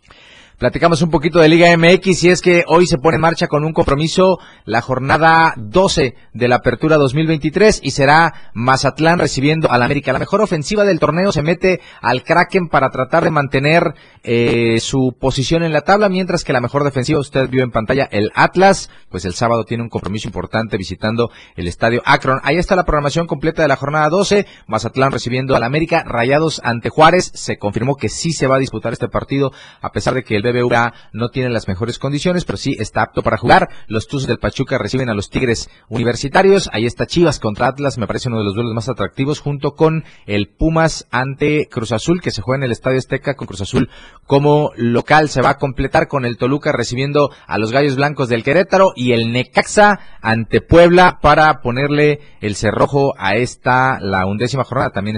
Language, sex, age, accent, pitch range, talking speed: Spanish, male, 30-49, Mexican, 115-155 Hz, 200 wpm